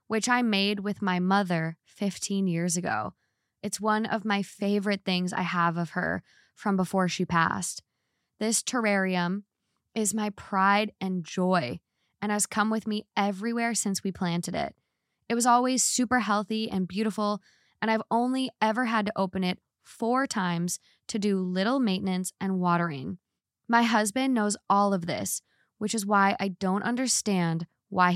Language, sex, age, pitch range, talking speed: English, female, 20-39, 185-220 Hz, 160 wpm